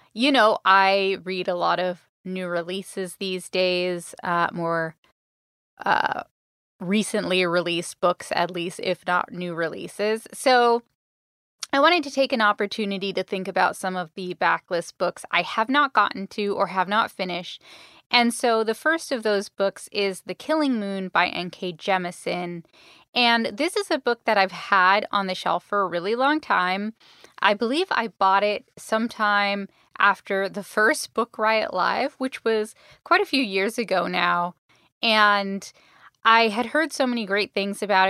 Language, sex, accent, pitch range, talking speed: English, female, American, 185-230 Hz, 165 wpm